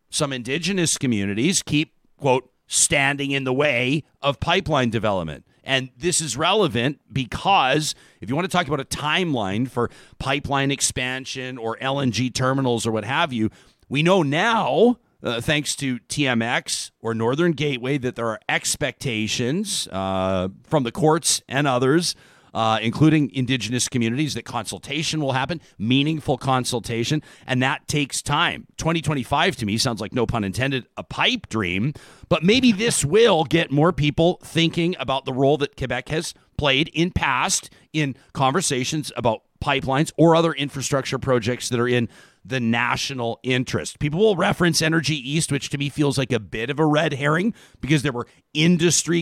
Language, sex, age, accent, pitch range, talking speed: English, male, 50-69, American, 120-155 Hz, 160 wpm